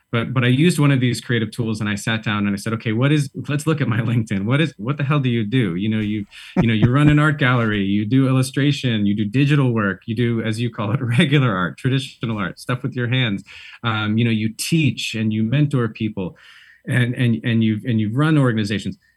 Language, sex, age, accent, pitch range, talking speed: English, male, 30-49, American, 105-130 Hz, 250 wpm